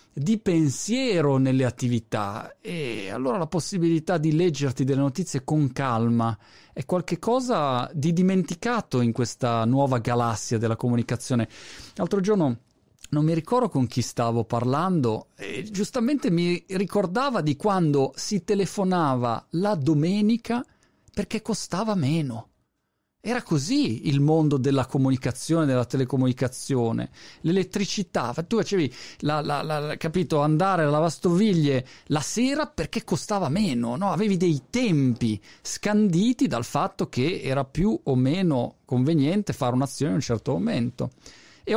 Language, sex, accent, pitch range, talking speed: Italian, male, native, 125-190 Hz, 130 wpm